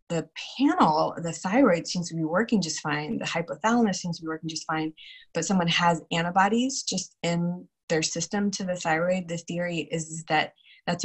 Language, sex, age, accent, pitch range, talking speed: English, female, 20-39, American, 160-185 Hz, 185 wpm